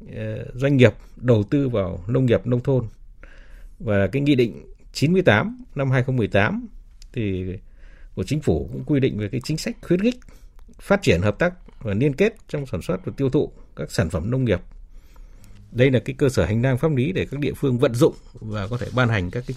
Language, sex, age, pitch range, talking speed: Vietnamese, male, 60-79, 100-140 Hz, 210 wpm